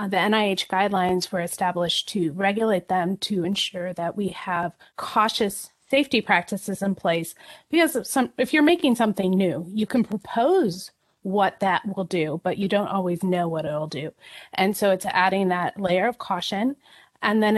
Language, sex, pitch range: English, female, 180-215 Hz